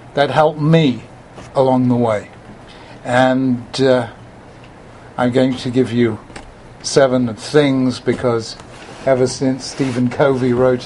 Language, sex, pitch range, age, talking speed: English, male, 125-175 Hz, 60-79, 115 wpm